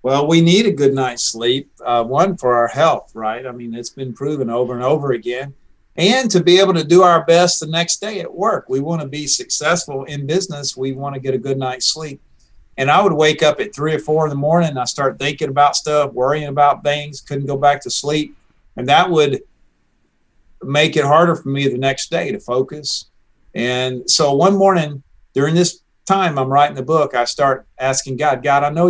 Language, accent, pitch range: English, American, 130-160 Hz